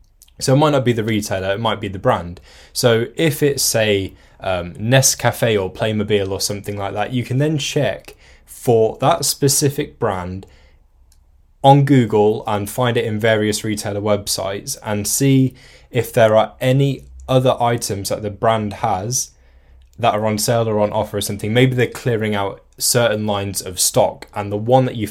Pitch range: 100-125 Hz